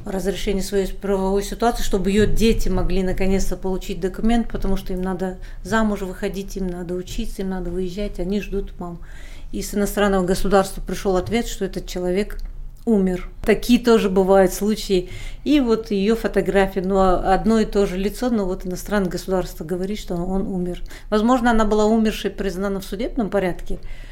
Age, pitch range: 40-59, 190-215 Hz